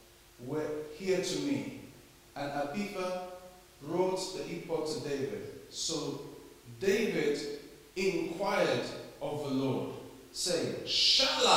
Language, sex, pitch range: English, male, 160-235 Hz